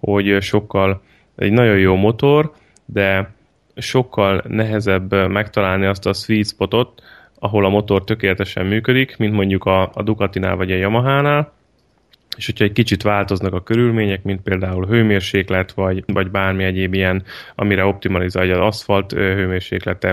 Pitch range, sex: 95-105 Hz, male